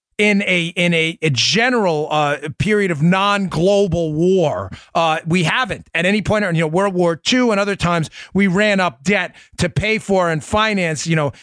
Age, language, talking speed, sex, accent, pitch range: 40-59, English, 195 wpm, male, American, 165-210 Hz